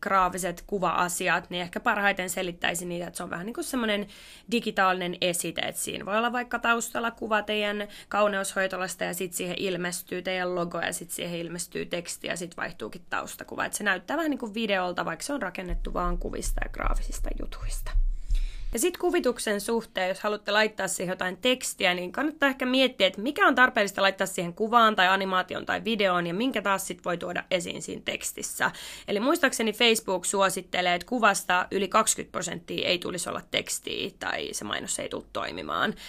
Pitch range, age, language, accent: 185-245 Hz, 20-39, Finnish, native